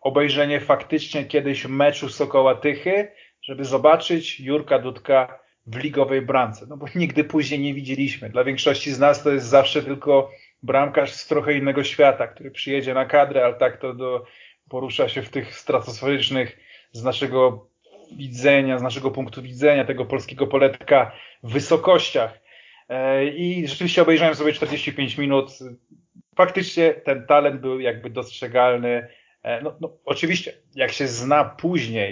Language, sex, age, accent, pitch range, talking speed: Polish, male, 30-49, native, 130-155 Hz, 135 wpm